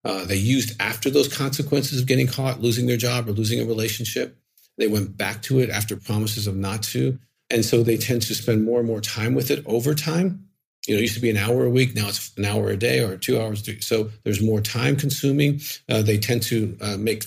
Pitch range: 105-125 Hz